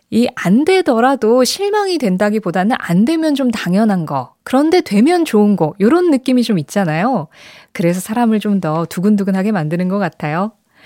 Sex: female